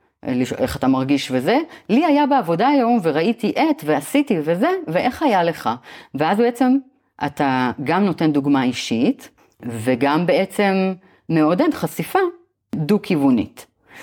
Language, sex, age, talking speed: Hebrew, female, 30-49, 115 wpm